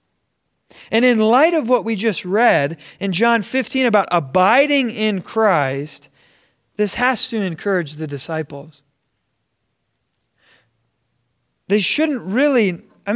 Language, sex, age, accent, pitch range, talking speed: English, male, 30-49, American, 160-235 Hz, 115 wpm